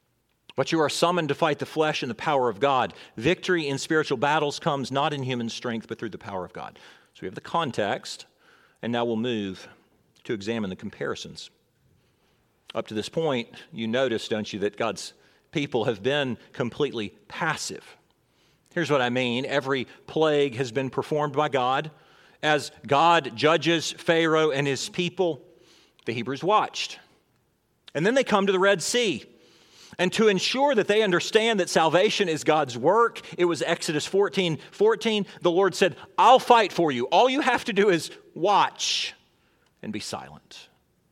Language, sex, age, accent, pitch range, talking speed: English, male, 40-59, American, 140-195 Hz, 170 wpm